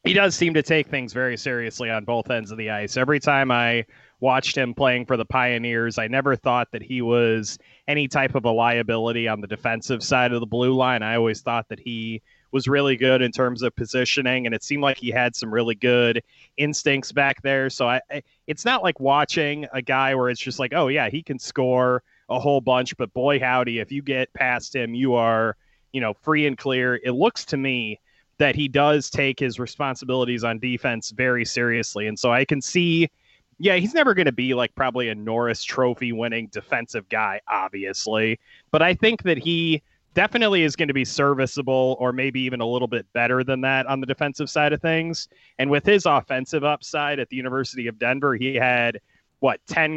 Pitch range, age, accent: 120-140 Hz, 20-39, American